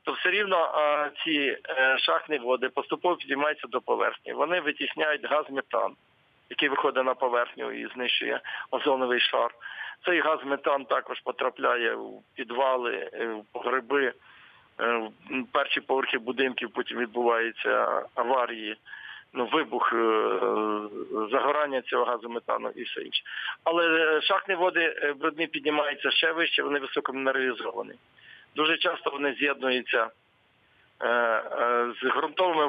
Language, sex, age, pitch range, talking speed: Ukrainian, male, 50-69, 125-155 Hz, 110 wpm